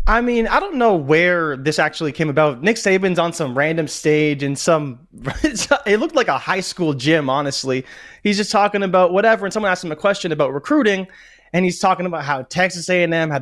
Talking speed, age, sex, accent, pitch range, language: 210 wpm, 20-39, male, American, 150-185 Hz, English